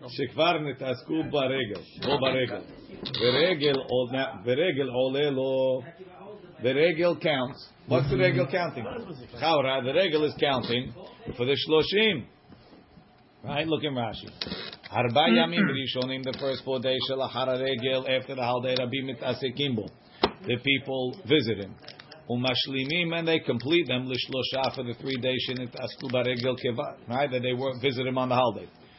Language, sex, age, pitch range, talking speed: English, male, 50-69, 130-160 Hz, 145 wpm